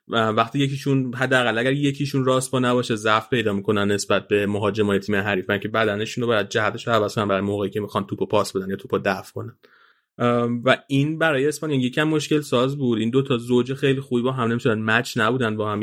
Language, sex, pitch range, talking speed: Persian, male, 110-135 Hz, 215 wpm